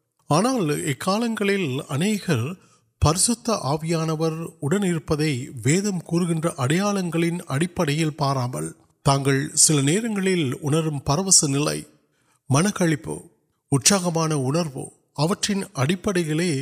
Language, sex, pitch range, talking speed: Urdu, male, 135-175 Hz, 35 wpm